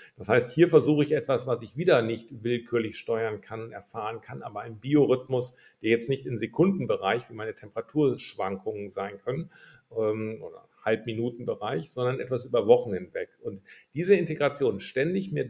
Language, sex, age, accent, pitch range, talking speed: German, male, 50-69, German, 115-155 Hz, 155 wpm